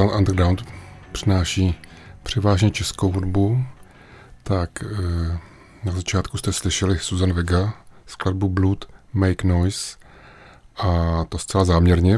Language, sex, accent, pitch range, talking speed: Czech, male, native, 90-105 Hz, 100 wpm